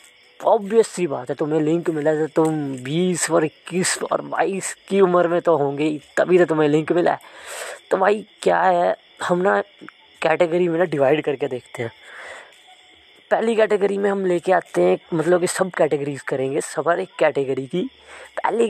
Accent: Indian